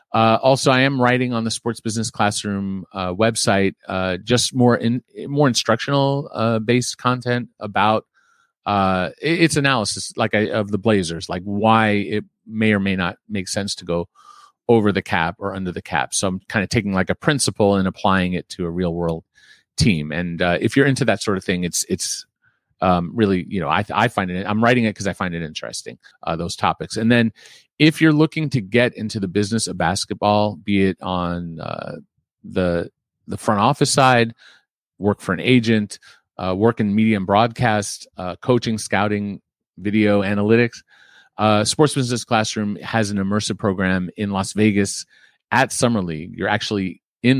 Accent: American